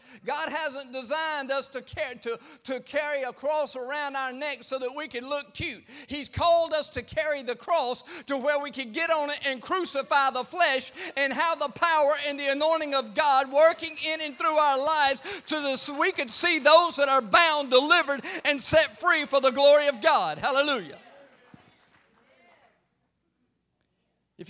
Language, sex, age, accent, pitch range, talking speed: English, male, 50-69, American, 190-290 Hz, 175 wpm